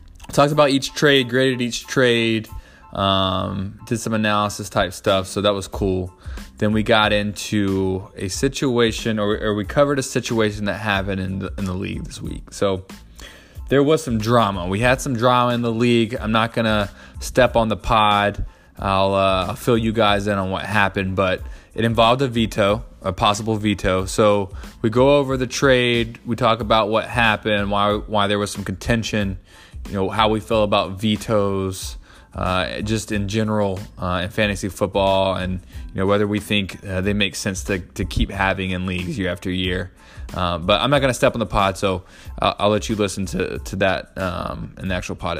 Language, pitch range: English, 95-115 Hz